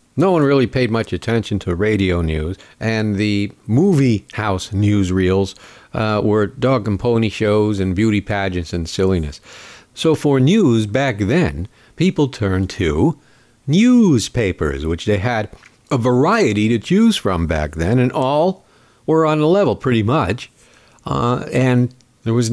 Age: 50-69